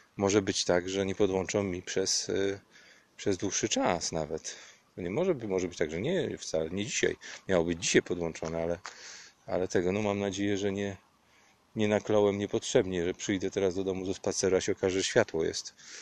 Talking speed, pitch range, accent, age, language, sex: 195 wpm, 90-100 Hz, native, 40-59, Polish, male